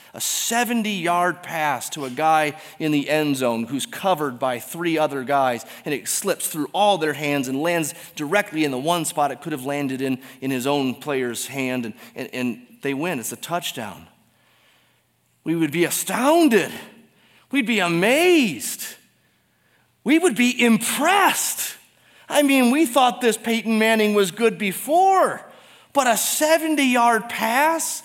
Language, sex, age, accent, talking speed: English, male, 30-49, American, 155 wpm